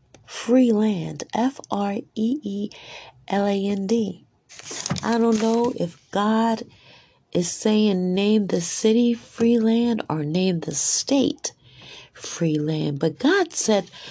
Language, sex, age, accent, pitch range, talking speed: English, female, 40-59, American, 165-225 Hz, 100 wpm